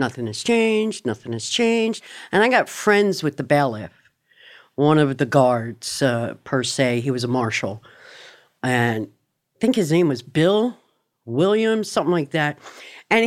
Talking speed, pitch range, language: 165 wpm, 130-165 Hz, English